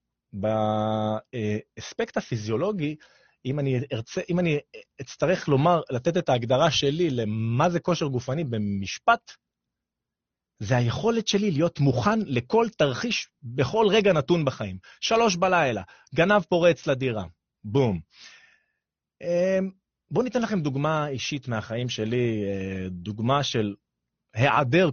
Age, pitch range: 30-49, 110-180 Hz